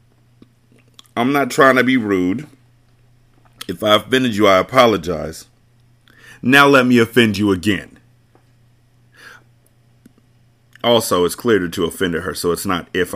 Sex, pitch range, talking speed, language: male, 110-125 Hz, 130 wpm, English